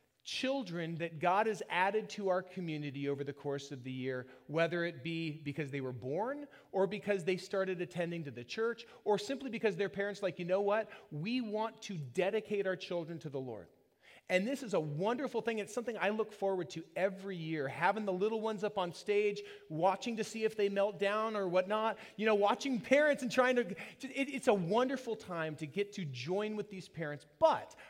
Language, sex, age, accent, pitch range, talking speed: English, male, 30-49, American, 160-220 Hz, 205 wpm